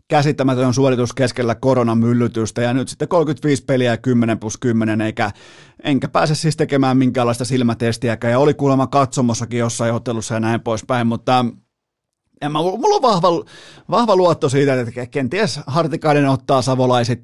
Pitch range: 120-150 Hz